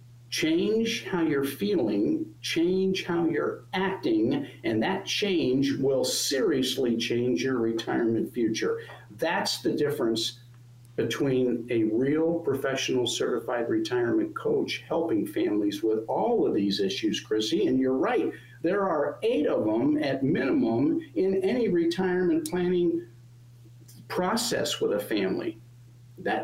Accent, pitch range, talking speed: American, 115-190 Hz, 125 wpm